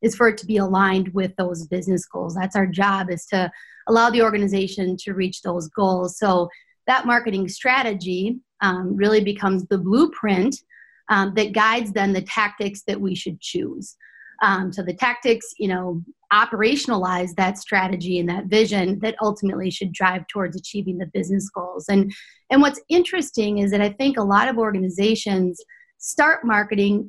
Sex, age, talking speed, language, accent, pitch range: female, 30-49, 170 wpm, English, American, 195-245 Hz